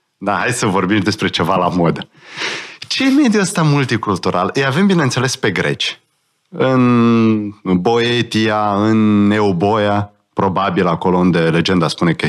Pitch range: 100-150 Hz